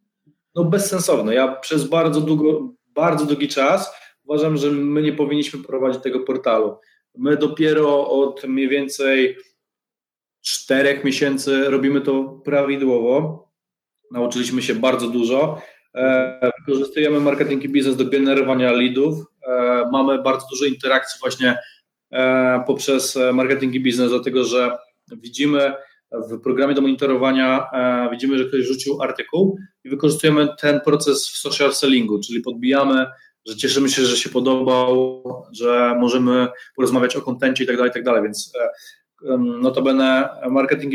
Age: 20-39